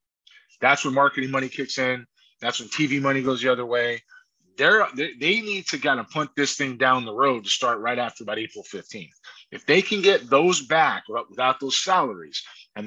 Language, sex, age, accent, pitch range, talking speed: English, male, 30-49, American, 130-180 Hz, 200 wpm